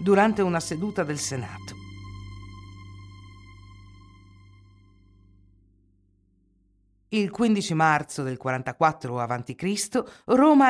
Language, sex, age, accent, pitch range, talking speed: Italian, female, 50-69, native, 135-210 Hz, 65 wpm